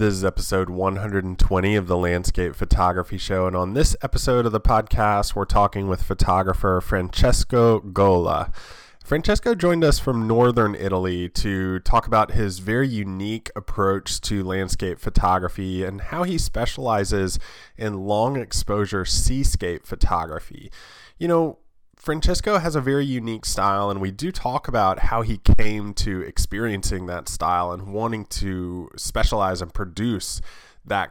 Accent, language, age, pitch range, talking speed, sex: American, English, 20-39, 95-120 Hz, 145 wpm, male